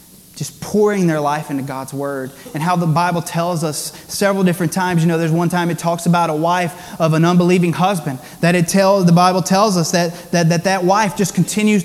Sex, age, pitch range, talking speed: male, 20-39, 175-215 Hz, 225 wpm